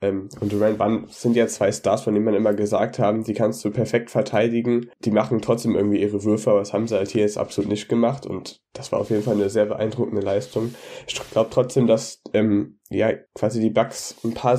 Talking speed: 230 wpm